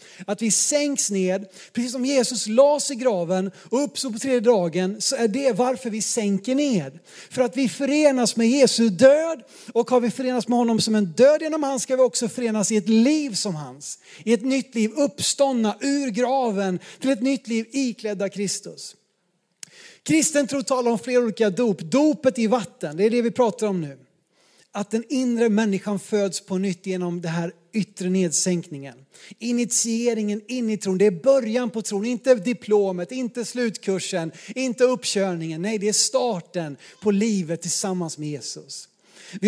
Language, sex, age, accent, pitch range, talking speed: Swedish, male, 30-49, native, 200-260 Hz, 175 wpm